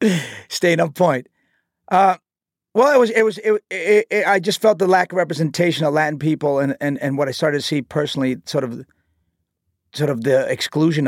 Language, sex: English, male